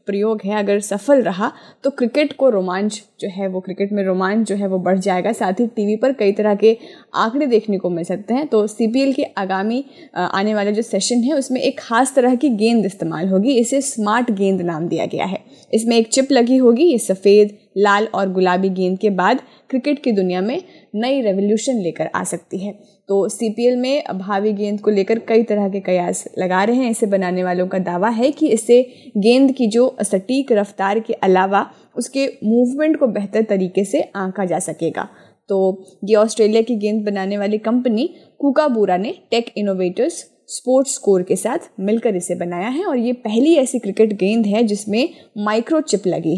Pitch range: 195-245 Hz